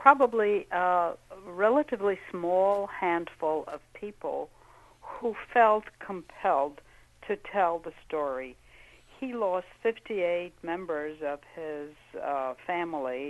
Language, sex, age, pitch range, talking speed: English, female, 60-79, 140-185 Hz, 100 wpm